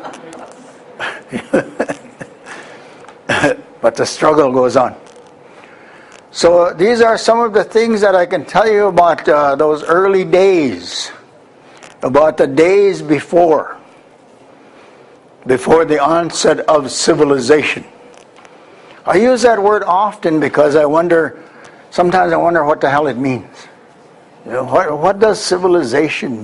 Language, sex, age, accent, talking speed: French, male, 60-79, American, 115 wpm